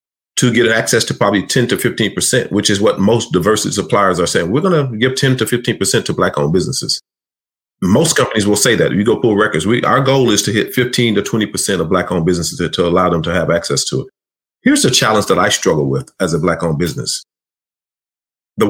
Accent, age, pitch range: American, 40-59, 100-130 Hz